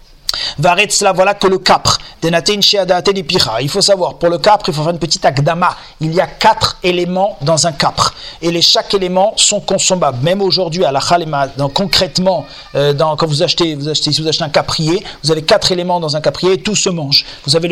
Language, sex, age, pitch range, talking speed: French, male, 40-59, 160-195 Hz, 215 wpm